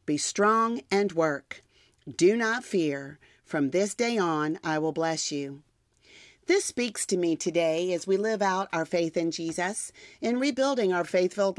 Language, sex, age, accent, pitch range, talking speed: English, female, 40-59, American, 165-215 Hz, 165 wpm